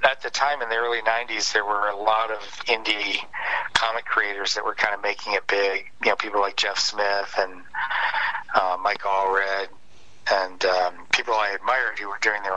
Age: 50-69